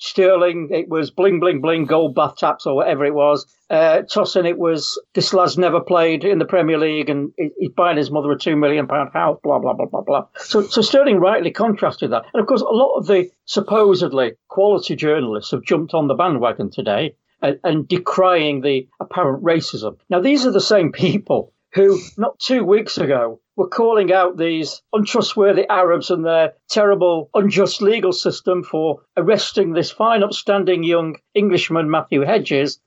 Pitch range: 160-205 Hz